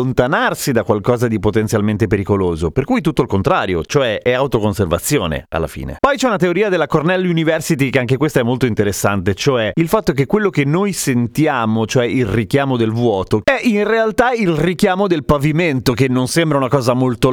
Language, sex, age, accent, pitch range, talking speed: Italian, male, 30-49, native, 125-175 Hz, 185 wpm